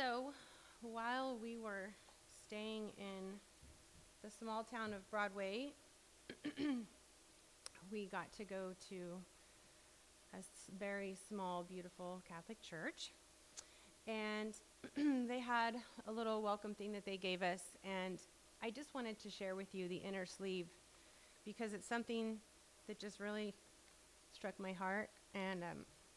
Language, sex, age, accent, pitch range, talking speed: English, female, 30-49, American, 195-230 Hz, 125 wpm